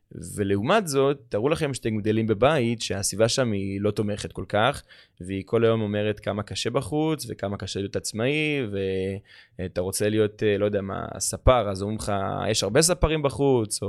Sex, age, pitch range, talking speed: male, 20-39, 100-125 Hz, 175 wpm